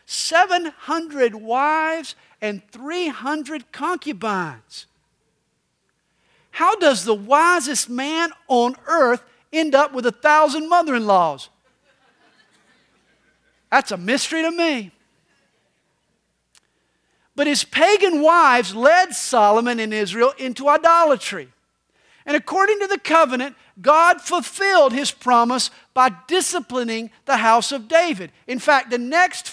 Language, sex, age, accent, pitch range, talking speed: English, male, 50-69, American, 225-315 Hz, 105 wpm